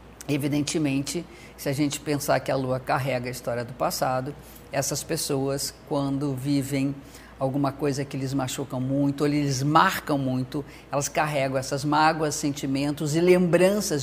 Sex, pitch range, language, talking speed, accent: female, 130-150 Hz, Portuguese, 145 wpm, Brazilian